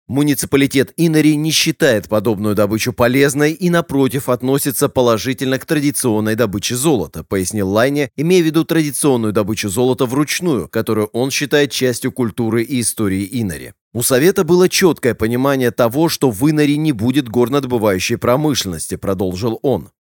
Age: 30-49